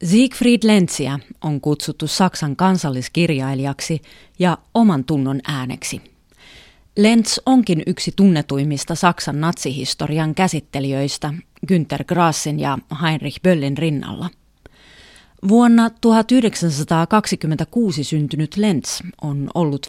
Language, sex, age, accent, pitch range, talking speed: Finnish, female, 30-49, native, 145-190 Hz, 90 wpm